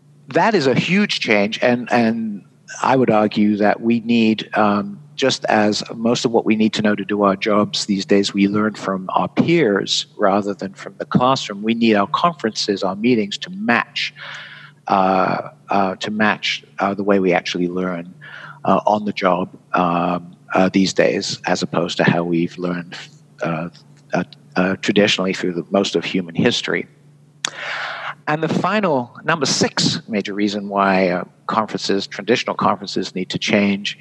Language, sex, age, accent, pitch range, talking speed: English, male, 50-69, American, 95-120 Hz, 160 wpm